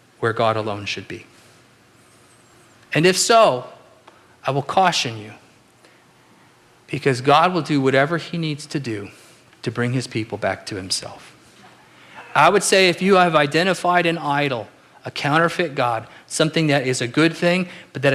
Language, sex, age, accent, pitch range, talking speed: English, male, 40-59, American, 125-175 Hz, 160 wpm